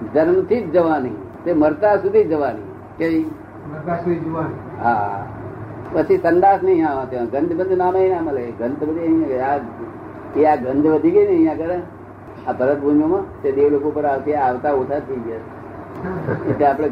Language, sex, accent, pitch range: Gujarati, male, native, 140-185 Hz